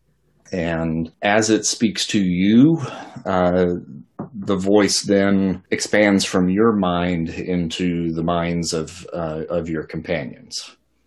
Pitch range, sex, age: 90-110 Hz, male, 40-59